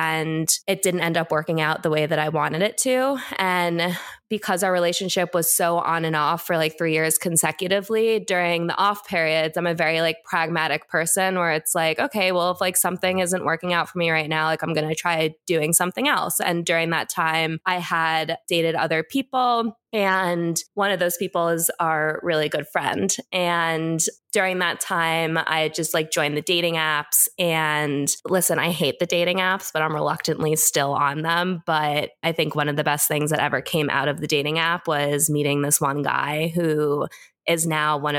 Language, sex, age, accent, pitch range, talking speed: English, female, 20-39, American, 155-180 Hz, 205 wpm